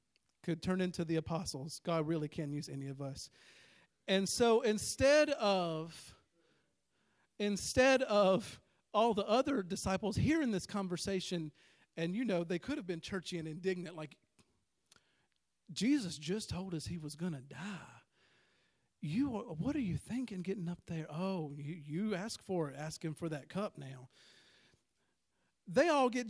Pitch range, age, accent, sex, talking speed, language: 165-220 Hz, 40-59, American, male, 155 wpm, English